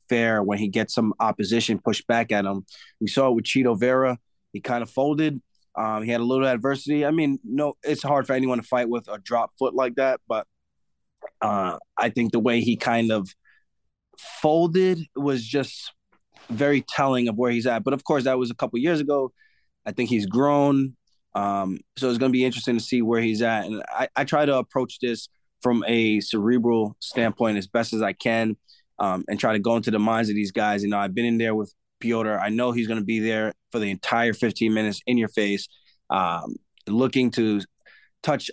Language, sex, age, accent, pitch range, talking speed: English, male, 20-39, American, 110-135 Hz, 215 wpm